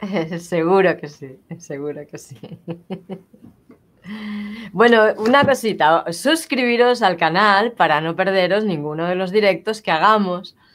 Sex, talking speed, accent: female, 115 wpm, Spanish